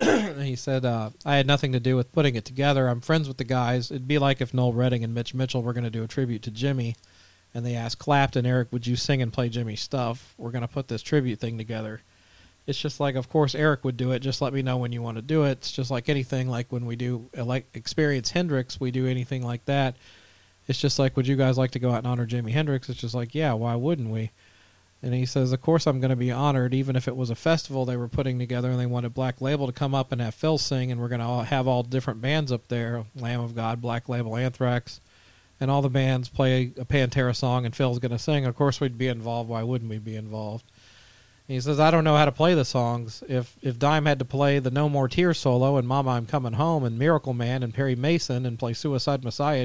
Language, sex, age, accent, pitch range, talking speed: English, male, 40-59, American, 120-140 Hz, 265 wpm